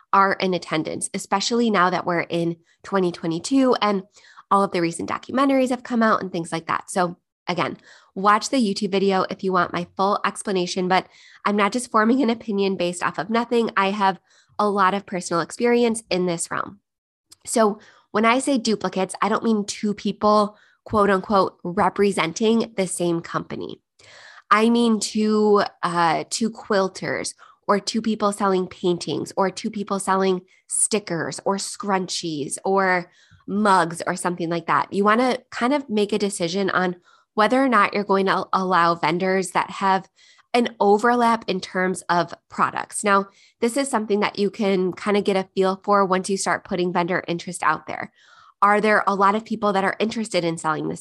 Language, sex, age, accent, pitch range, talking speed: English, female, 20-39, American, 180-215 Hz, 180 wpm